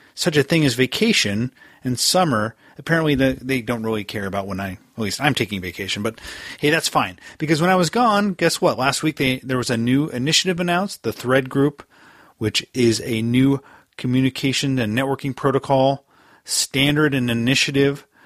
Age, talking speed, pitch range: 30-49, 175 wpm, 115-150 Hz